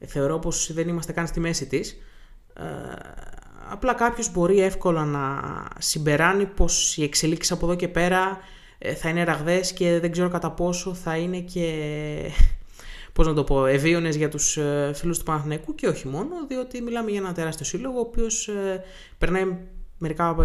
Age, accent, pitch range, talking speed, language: 20-39, native, 155-190 Hz, 160 wpm, Greek